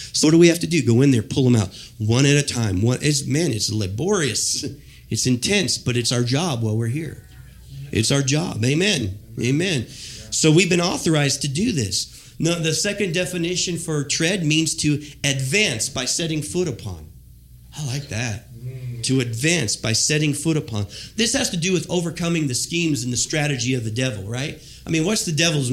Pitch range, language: 120-160 Hz, English